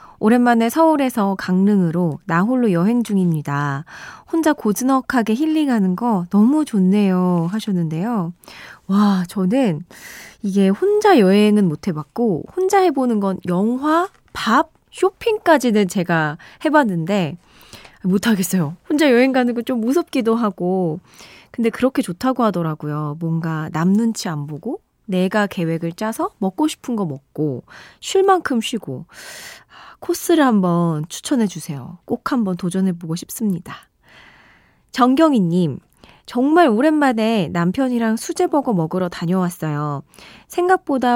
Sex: female